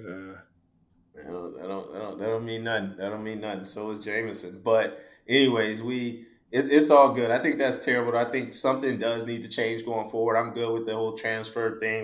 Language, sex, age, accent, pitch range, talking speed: English, male, 20-39, American, 100-120 Hz, 225 wpm